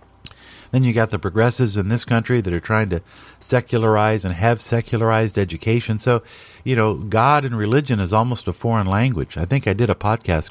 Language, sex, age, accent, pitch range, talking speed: English, male, 50-69, American, 95-115 Hz, 195 wpm